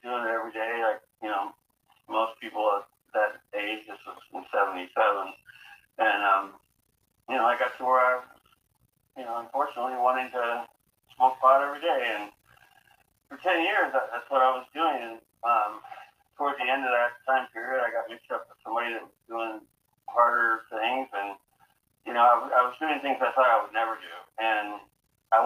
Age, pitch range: 40-59, 110-135 Hz